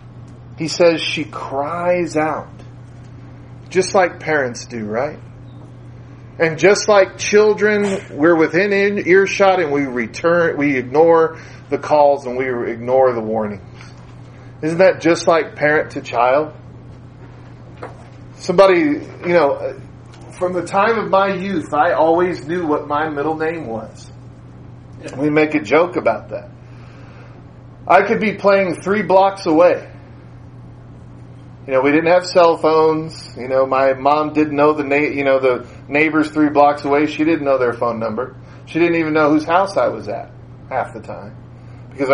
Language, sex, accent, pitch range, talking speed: English, male, American, 125-175 Hz, 150 wpm